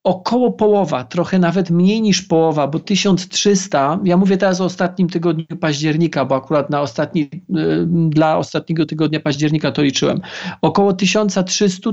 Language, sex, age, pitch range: Polish, male, 40-59, 155-195 Hz